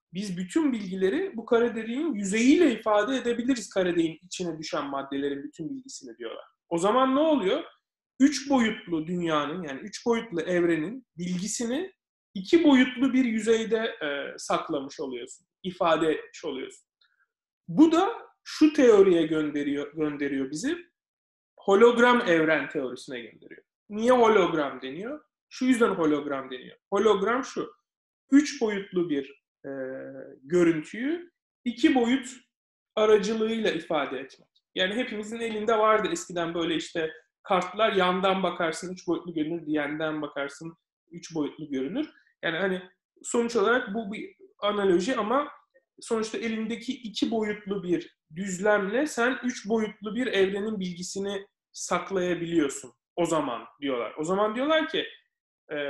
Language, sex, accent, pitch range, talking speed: English, male, Turkish, 170-255 Hz, 120 wpm